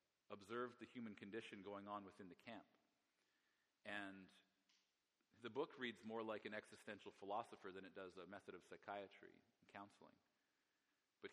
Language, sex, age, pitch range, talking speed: English, male, 40-59, 100-115 Hz, 150 wpm